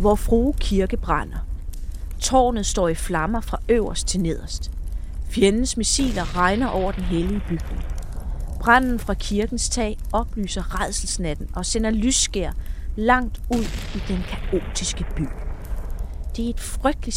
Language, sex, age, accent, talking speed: Danish, female, 30-49, native, 135 wpm